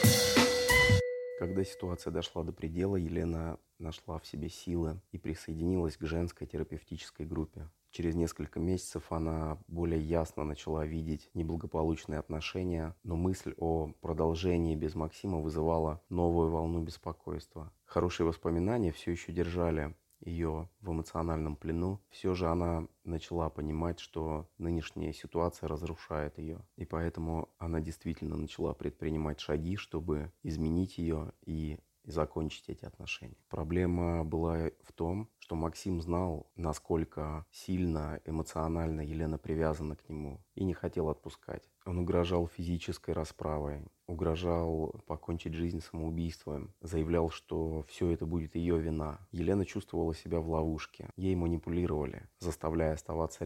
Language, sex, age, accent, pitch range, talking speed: Russian, male, 30-49, native, 80-85 Hz, 125 wpm